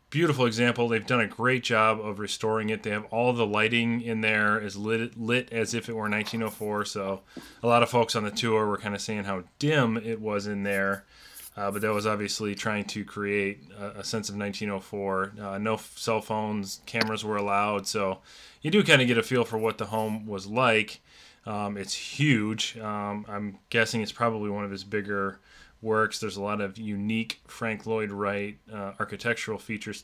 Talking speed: 200 wpm